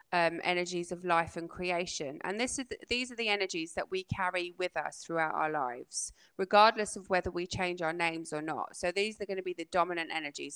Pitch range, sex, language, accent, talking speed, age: 165-200 Hz, female, English, British, 225 wpm, 20-39